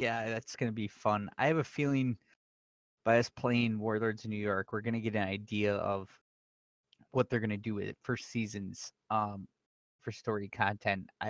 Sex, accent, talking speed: male, American, 200 wpm